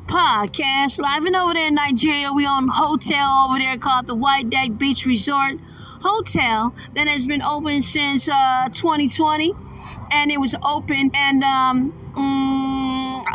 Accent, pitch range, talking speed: American, 240-280 Hz, 150 wpm